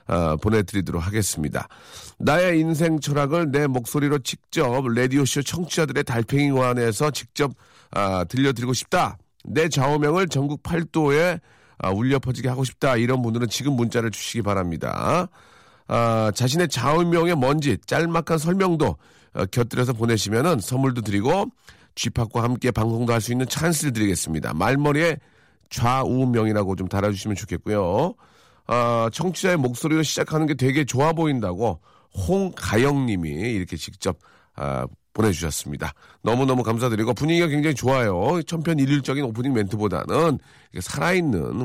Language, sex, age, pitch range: Korean, male, 40-59, 105-145 Hz